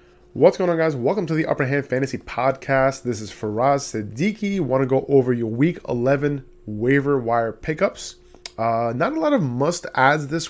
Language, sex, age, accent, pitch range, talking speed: English, male, 20-39, American, 110-135 Hz, 185 wpm